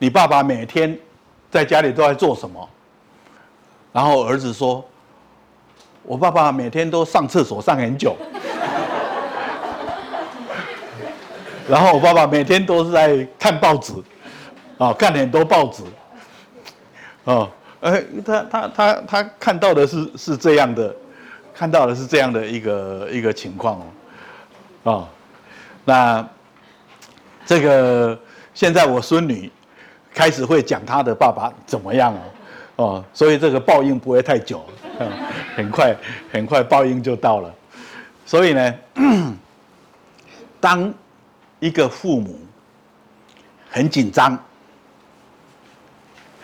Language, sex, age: Chinese, male, 60-79